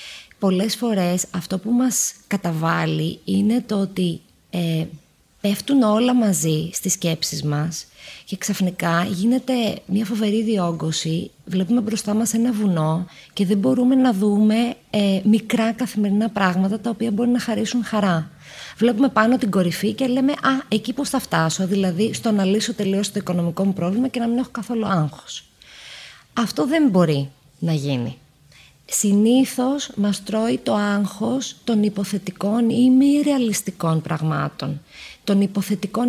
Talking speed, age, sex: 145 wpm, 20-39, female